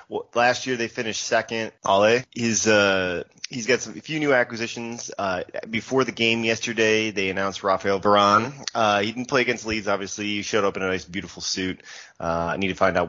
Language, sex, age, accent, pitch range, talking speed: English, male, 20-39, American, 90-110 Hz, 210 wpm